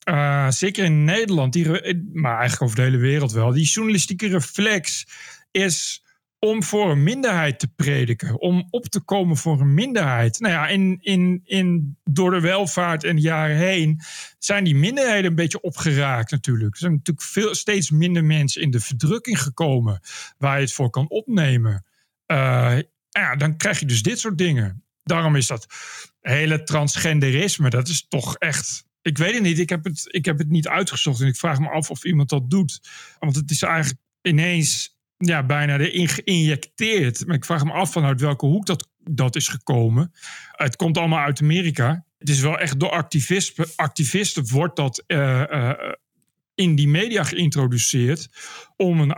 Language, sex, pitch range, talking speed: Dutch, male, 140-180 Hz, 180 wpm